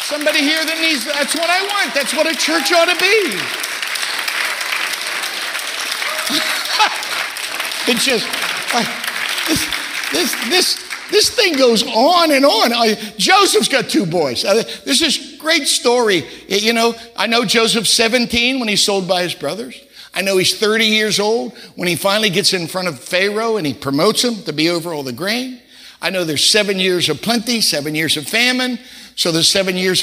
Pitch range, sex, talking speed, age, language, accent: 180-250 Hz, male, 175 wpm, 50-69, English, American